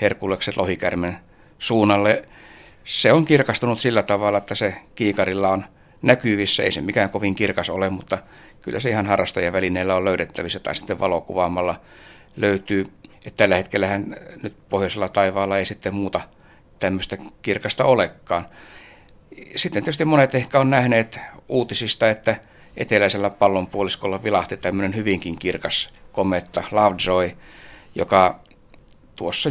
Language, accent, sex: Finnish, native, male